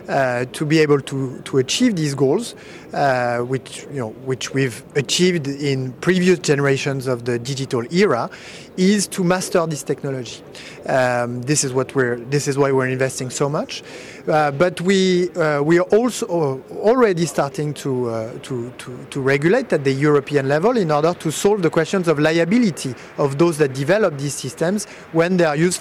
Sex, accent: male, French